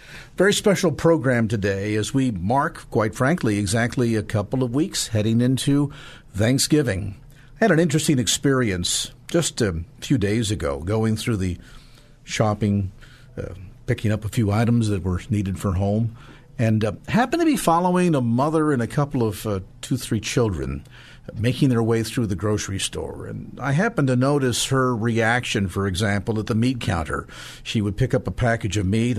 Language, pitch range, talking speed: English, 110-135 Hz, 175 wpm